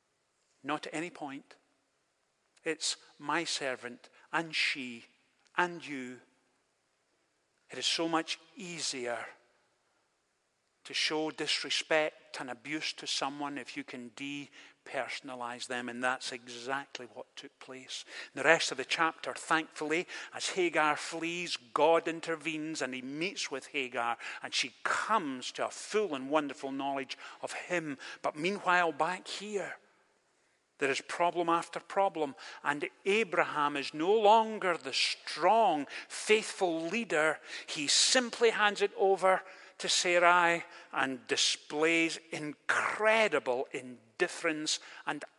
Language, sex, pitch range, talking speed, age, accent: English, male, 140-210 Hz, 120 wpm, 50-69, British